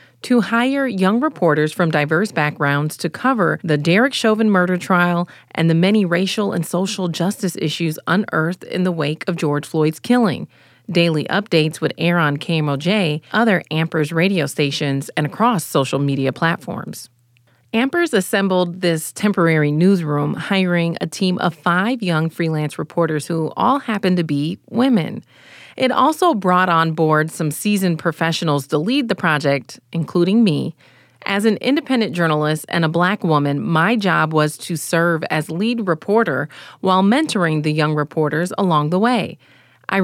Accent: American